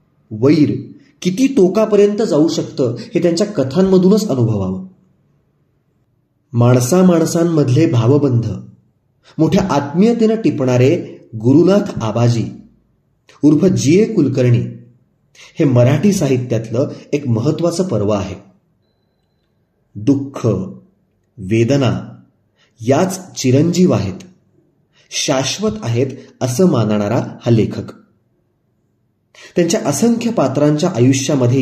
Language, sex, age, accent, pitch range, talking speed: Marathi, male, 30-49, native, 115-170 Hz, 80 wpm